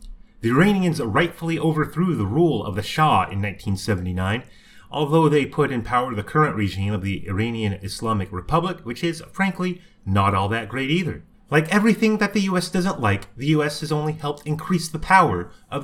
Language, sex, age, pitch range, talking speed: English, male, 30-49, 110-160 Hz, 180 wpm